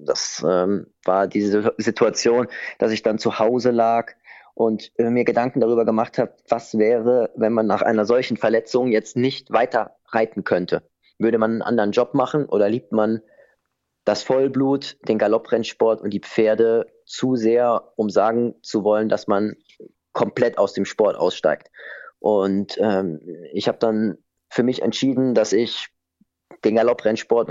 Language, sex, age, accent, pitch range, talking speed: German, male, 30-49, German, 110-125 Hz, 155 wpm